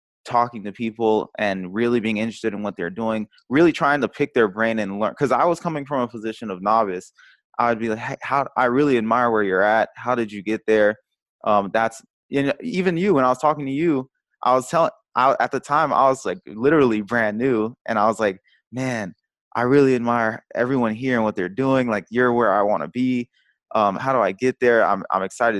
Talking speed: 230 wpm